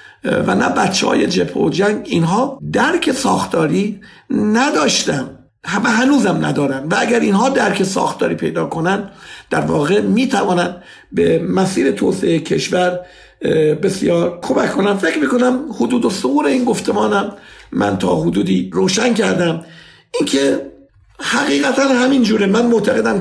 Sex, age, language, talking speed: male, 50-69, Persian, 120 wpm